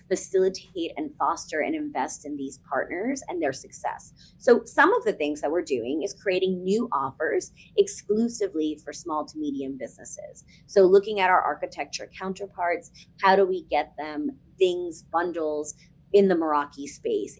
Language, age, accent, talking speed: English, 30-49, American, 160 wpm